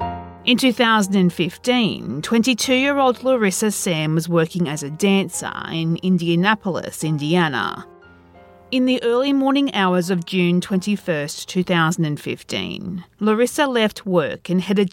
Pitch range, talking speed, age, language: 160-220 Hz, 110 wpm, 40-59, English